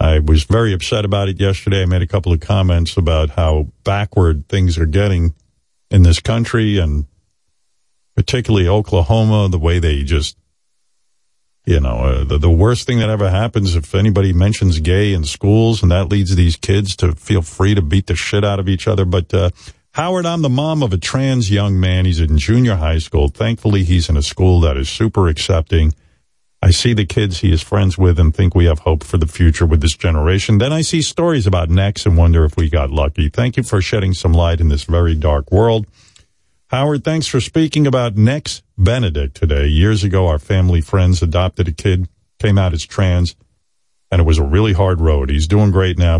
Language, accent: English, American